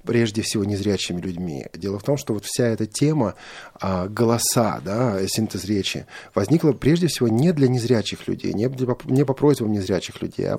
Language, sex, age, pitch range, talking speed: Russian, male, 30-49, 100-140 Hz, 175 wpm